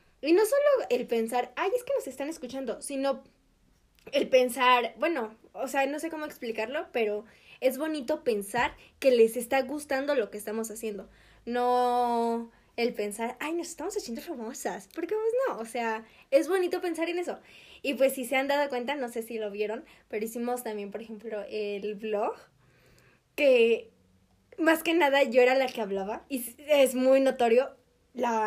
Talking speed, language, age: 180 wpm, Spanish, 10-29